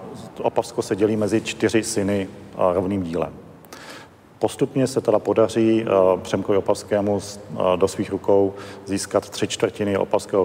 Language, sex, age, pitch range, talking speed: Czech, male, 40-59, 95-110 Hz, 125 wpm